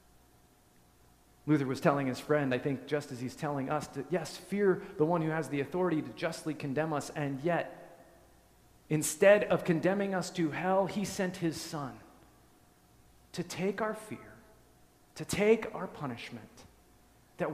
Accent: American